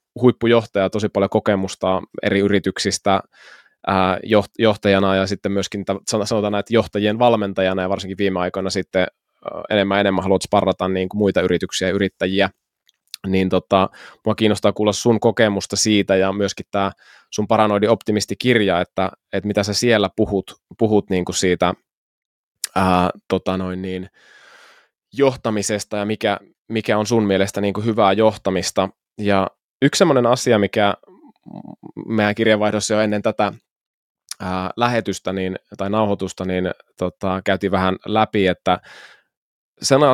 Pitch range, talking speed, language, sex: 95-110 Hz, 140 wpm, Finnish, male